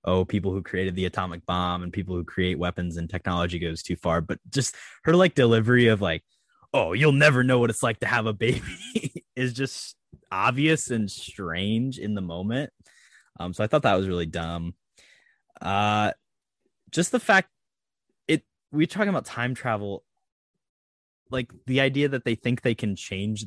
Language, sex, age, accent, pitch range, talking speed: English, male, 20-39, American, 90-125 Hz, 180 wpm